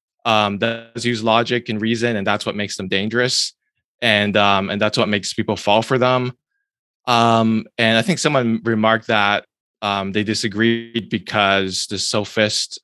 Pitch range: 105-130 Hz